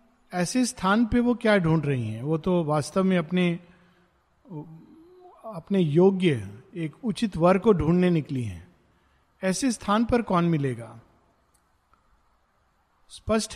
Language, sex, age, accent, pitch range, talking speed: Hindi, male, 50-69, native, 165-220 Hz, 125 wpm